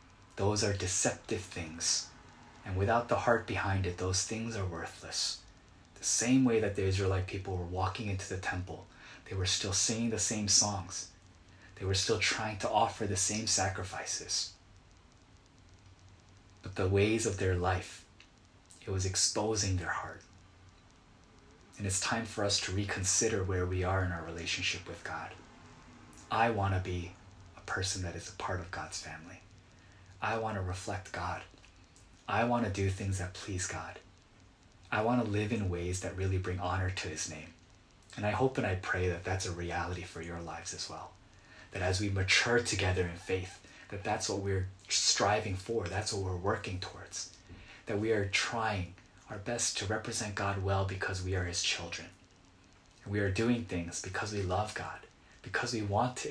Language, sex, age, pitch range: Korean, male, 20-39, 90-105 Hz